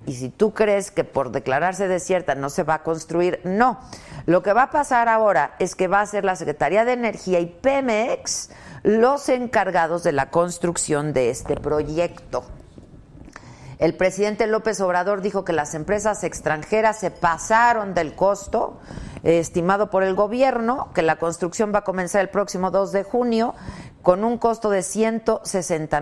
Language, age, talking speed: Spanish, 50-69, 165 wpm